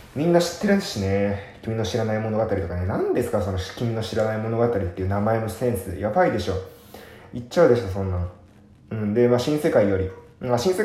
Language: Japanese